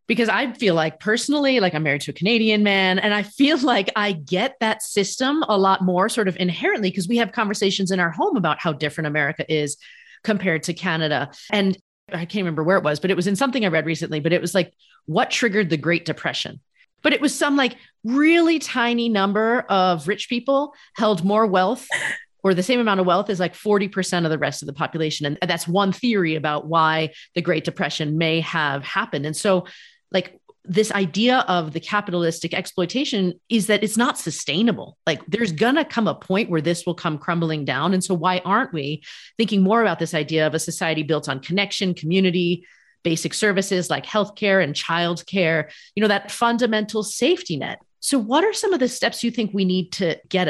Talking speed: 210 wpm